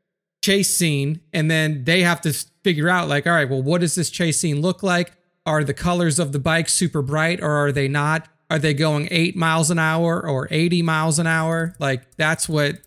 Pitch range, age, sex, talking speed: 145-175 Hz, 30-49, male, 215 wpm